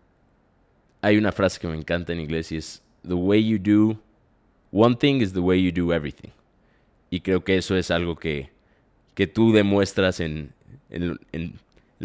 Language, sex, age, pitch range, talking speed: Spanish, male, 20-39, 85-110 Hz, 180 wpm